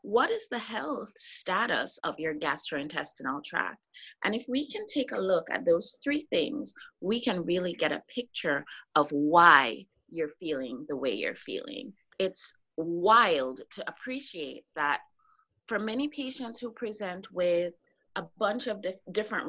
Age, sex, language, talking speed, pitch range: 30-49, female, English, 150 wpm, 160-250 Hz